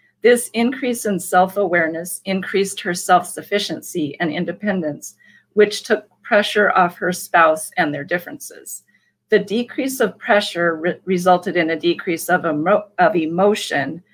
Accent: American